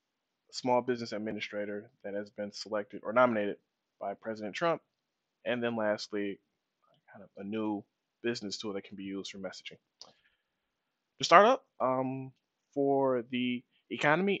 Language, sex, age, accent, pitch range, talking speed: English, male, 20-39, American, 105-130 Hz, 140 wpm